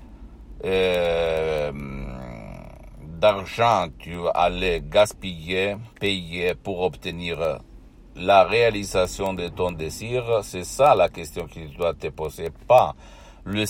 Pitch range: 90-110 Hz